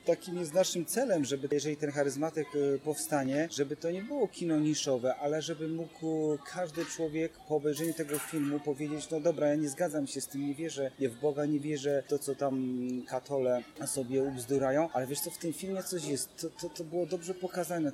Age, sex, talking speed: 30-49, male, 200 wpm